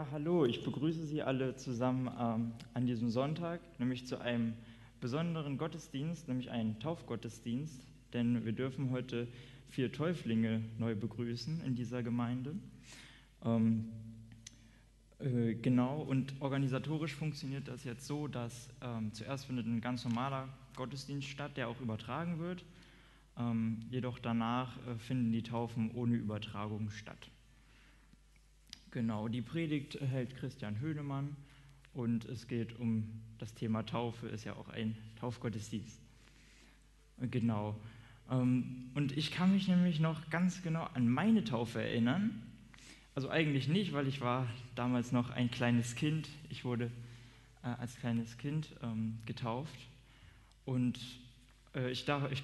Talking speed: 130 wpm